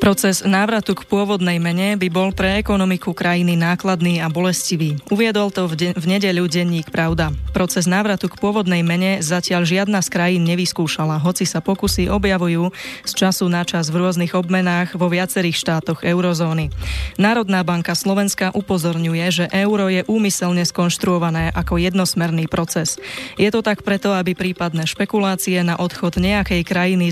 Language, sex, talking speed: Slovak, female, 155 wpm